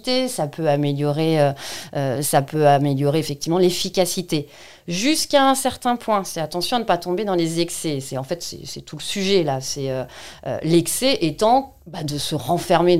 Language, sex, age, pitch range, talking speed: French, female, 40-59, 145-180 Hz, 190 wpm